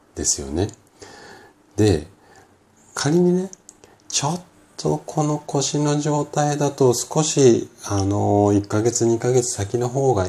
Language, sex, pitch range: Japanese, male, 85-120 Hz